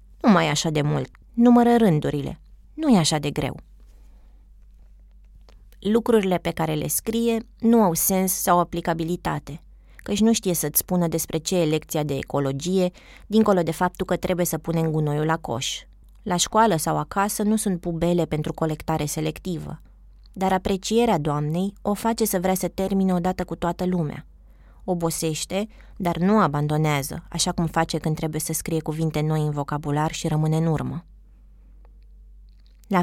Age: 20-39